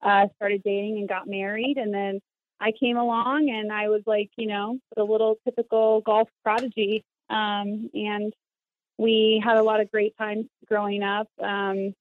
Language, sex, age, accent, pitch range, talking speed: English, female, 30-49, American, 195-225 Hz, 170 wpm